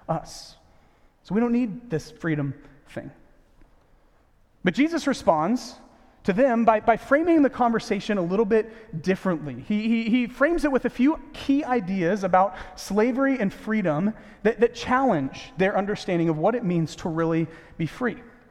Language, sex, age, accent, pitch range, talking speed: English, male, 30-49, American, 170-240 Hz, 160 wpm